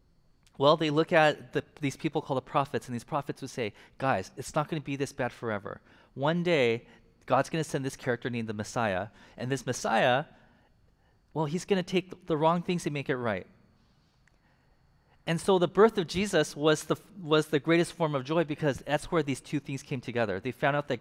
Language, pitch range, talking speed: English, 130-170 Hz, 215 wpm